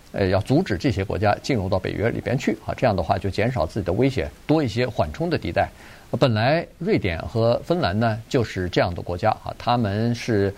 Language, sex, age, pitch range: Chinese, male, 50-69, 105-150 Hz